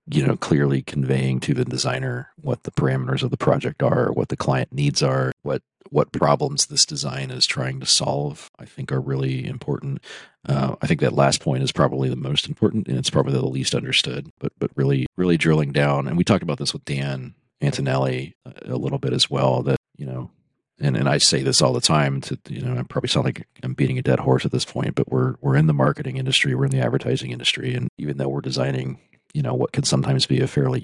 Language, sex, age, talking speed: English, male, 40-59, 235 wpm